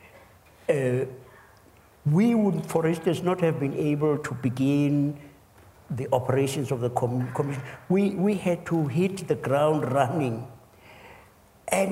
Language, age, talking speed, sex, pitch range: English, 60-79, 130 wpm, male, 125-160 Hz